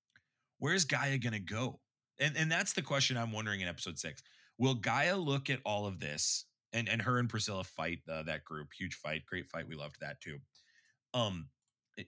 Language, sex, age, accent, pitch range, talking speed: English, male, 30-49, American, 100-130 Hz, 210 wpm